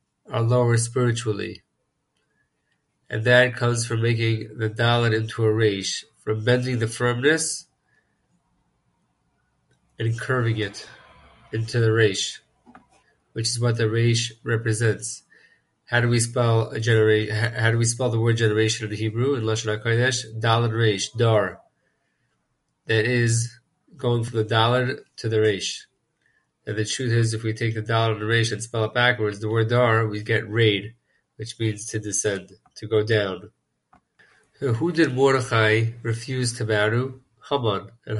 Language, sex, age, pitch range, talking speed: English, male, 30-49, 110-120 Hz, 145 wpm